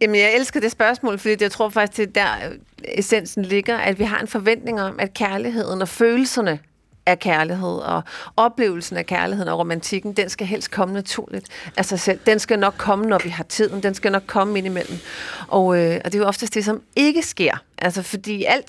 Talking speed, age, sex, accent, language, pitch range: 210 wpm, 40-59, female, native, Danish, 190-225 Hz